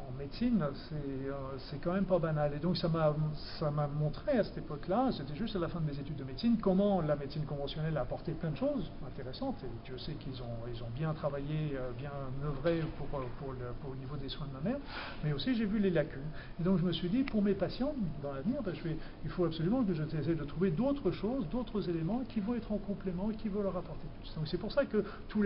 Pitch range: 150-190 Hz